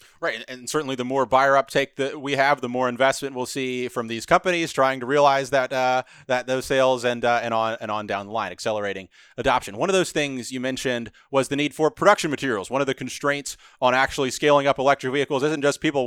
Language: English